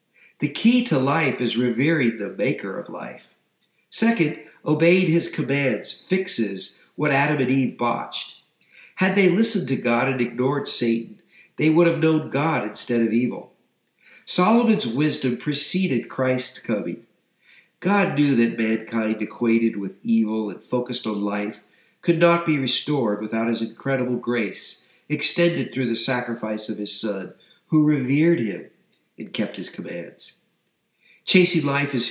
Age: 50-69